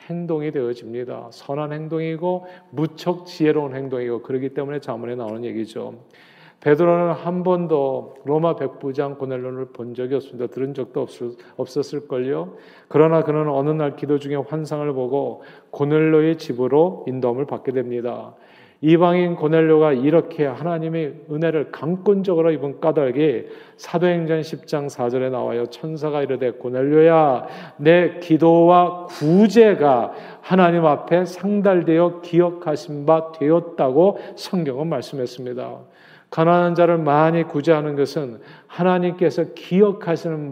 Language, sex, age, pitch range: Korean, male, 40-59, 140-175 Hz